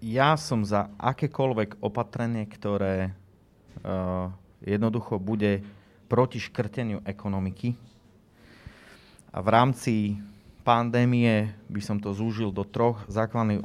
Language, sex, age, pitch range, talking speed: Slovak, male, 30-49, 100-120 Hz, 100 wpm